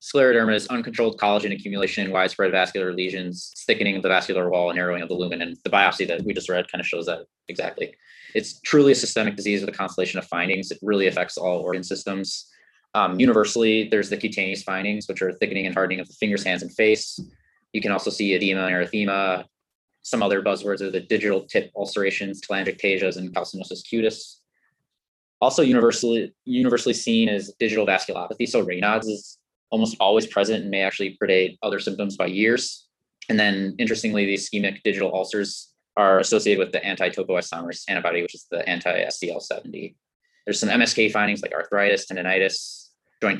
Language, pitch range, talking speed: English, 95-105 Hz, 180 wpm